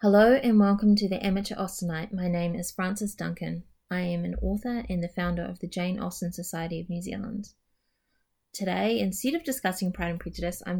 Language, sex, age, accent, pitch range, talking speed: English, female, 20-39, Australian, 175-210 Hz, 195 wpm